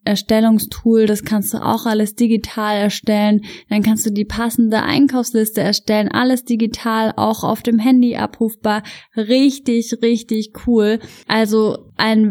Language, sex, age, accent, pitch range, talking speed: German, female, 10-29, German, 210-240 Hz, 130 wpm